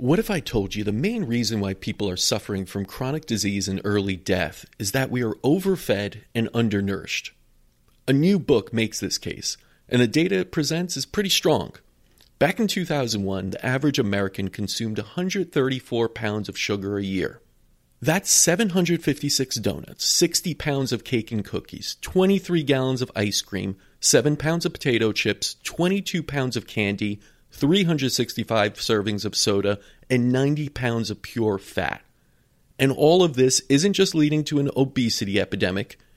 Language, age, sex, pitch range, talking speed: English, 40-59, male, 105-145 Hz, 160 wpm